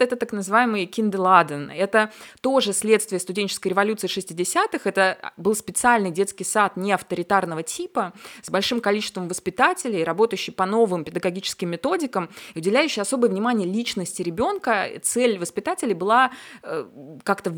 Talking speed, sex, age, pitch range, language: 125 wpm, female, 20-39, 180-225 Hz, Russian